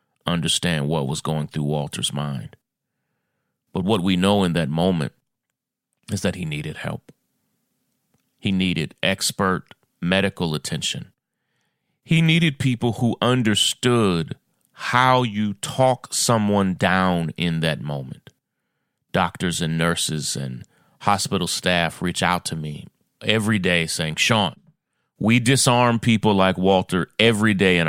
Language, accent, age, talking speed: English, American, 30-49, 125 wpm